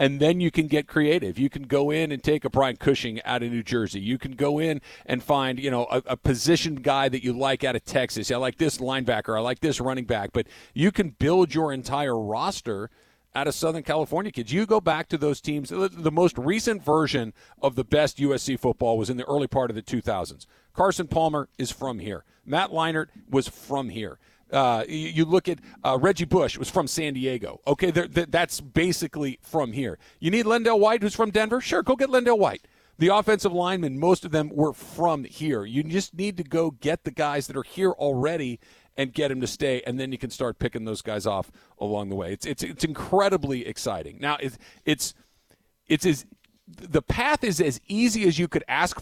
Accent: American